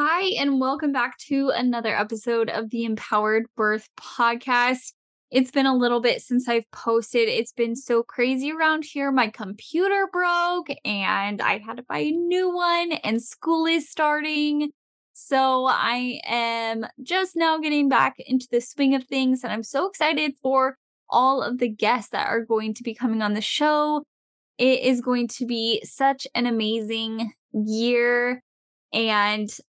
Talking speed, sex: 165 wpm, female